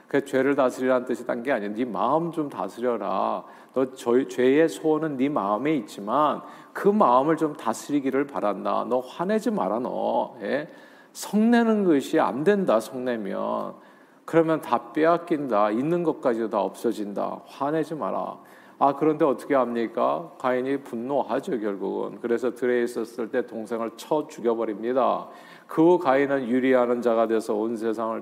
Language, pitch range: Korean, 120-155 Hz